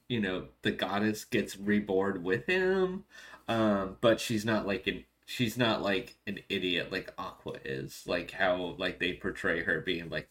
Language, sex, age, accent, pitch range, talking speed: English, male, 30-49, American, 95-115 Hz, 175 wpm